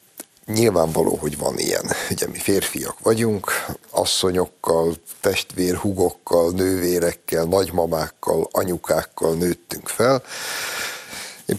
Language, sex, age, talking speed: Hungarian, male, 60-79, 85 wpm